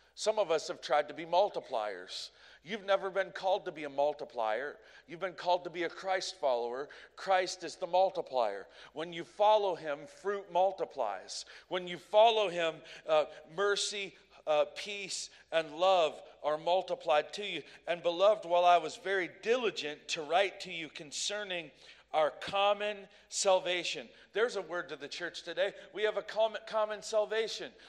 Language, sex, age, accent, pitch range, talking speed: English, male, 40-59, American, 175-220 Hz, 160 wpm